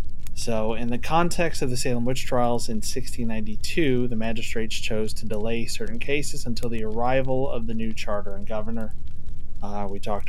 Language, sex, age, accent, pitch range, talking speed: English, male, 30-49, American, 100-120 Hz, 175 wpm